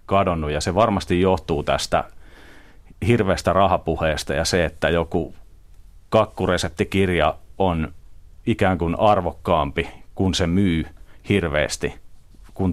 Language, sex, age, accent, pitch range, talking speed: Finnish, male, 40-59, native, 80-100 Hz, 105 wpm